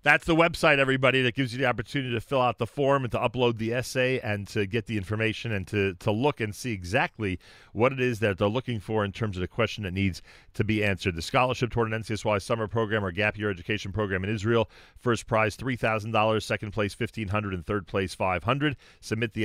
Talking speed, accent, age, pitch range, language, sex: 230 wpm, American, 40-59, 95-115 Hz, English, male